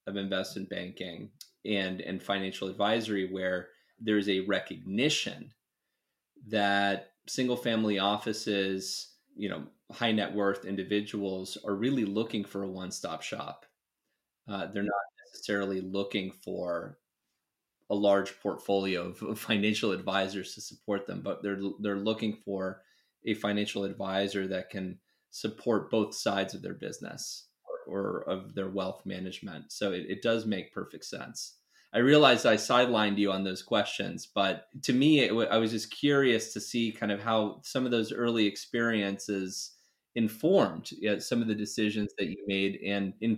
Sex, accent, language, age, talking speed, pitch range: male, American, English, 20-39, 155 wpm, 100-110 Hz